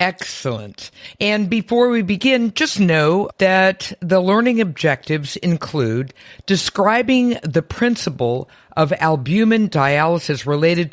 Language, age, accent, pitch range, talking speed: English, 50-69, American, 130-180 Hz, 105 wpm